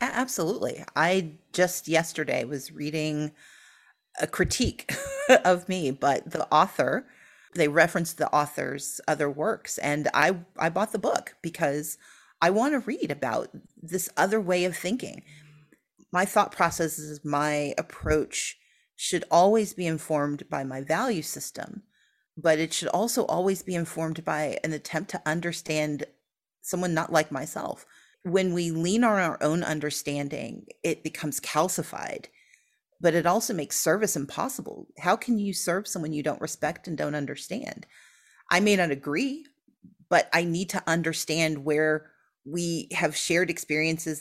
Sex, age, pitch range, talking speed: female, 40-59, 150-180 Hz, 145 wpm